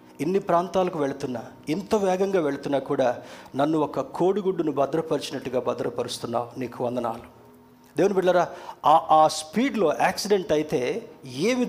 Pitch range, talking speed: 150-205 Hz, 110 wpm